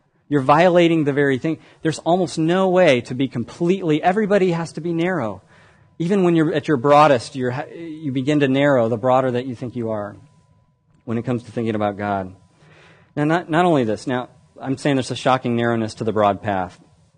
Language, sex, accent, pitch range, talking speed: English, male, American, 120-155 Hz, 205 wpm